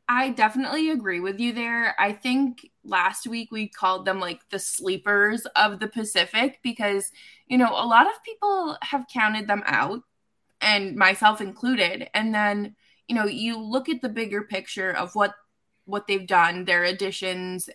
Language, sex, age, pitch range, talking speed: English, female, 20-39, 185-250 Hz, 170 wpm